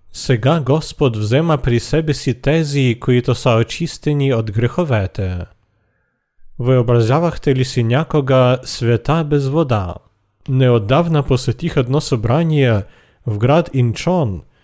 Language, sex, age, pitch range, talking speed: Bulgarian, male, 40-59, 115-150 Hz, 105 wpm